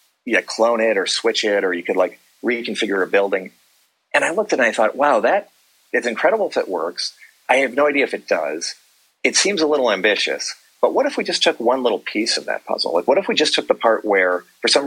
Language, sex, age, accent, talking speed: English, male, 40-59, American, 255 wpm